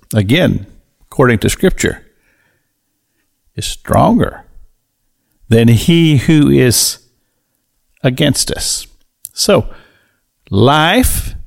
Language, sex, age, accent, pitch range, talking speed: English, male, 60-79, American, 105-160 Hz, 75 wpm